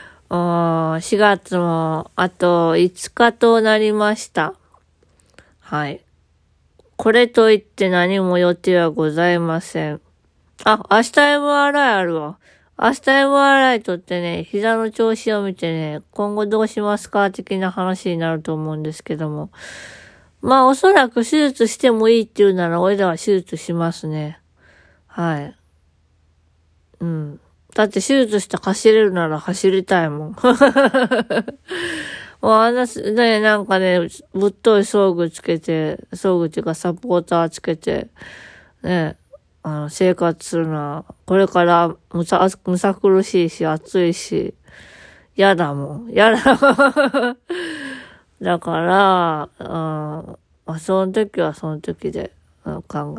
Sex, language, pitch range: female, Japanese, 160-220 Hz